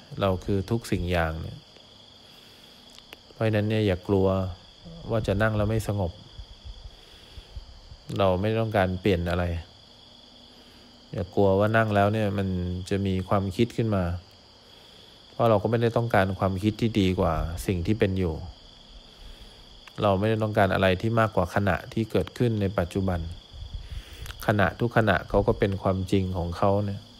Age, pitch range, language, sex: 20-39, 90-110 Hz, English, male